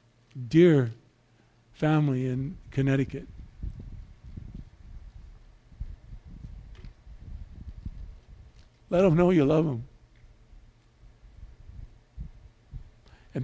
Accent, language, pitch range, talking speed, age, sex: American, English, 115-165 Hz, 50 wpm, 50-69, male